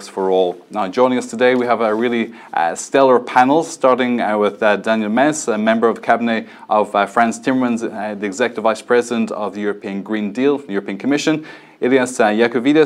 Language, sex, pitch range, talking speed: English, male, 110-135 Hz, 200 wpm